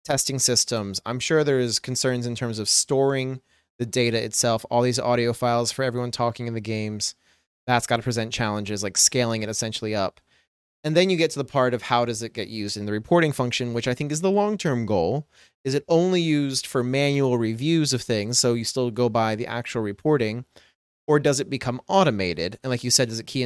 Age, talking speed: 30-49, 225 wpm